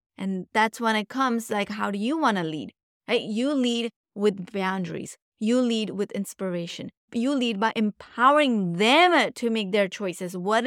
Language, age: English, 20-39